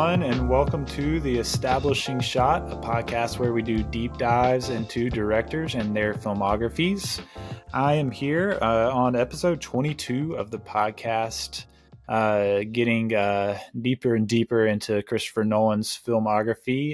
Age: 20-39